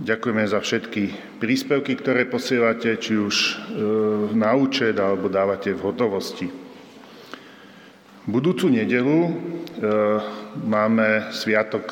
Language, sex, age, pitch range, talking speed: Slovak, male, 50-69, 110-150 Hz, 90 wpm